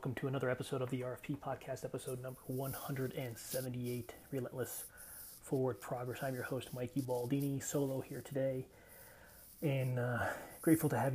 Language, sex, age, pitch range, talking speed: English, male, 30-49, 125-140 Hz, 145 wpm